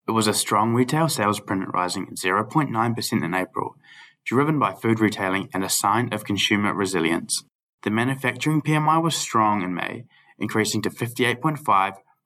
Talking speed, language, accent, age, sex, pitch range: 150 wpm, English, Australian, 20-39, male, 100-125 Hz